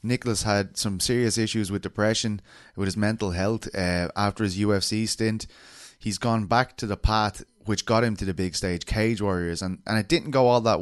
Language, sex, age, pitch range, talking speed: English, male, 20-39, 95-115 Hz, 210 wpm